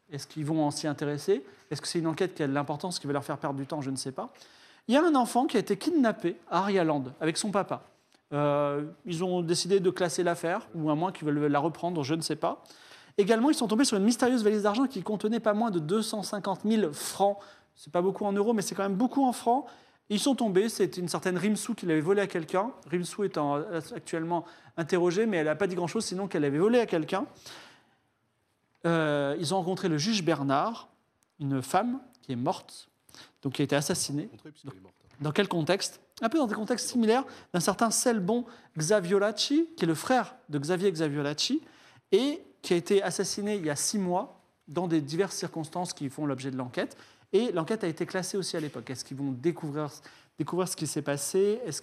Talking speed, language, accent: 220 wpm, French, French